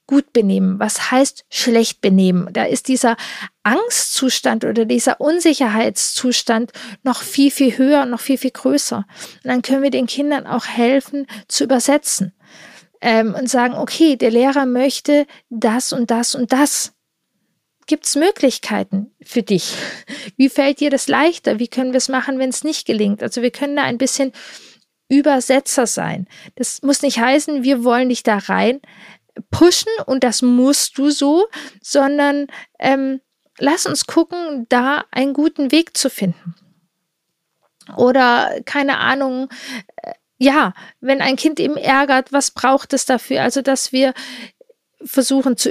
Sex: female